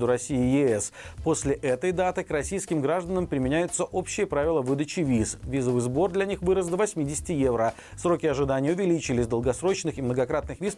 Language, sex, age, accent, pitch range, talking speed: Russian, male, 40-59, native, 130-185 Hz, 160 wpm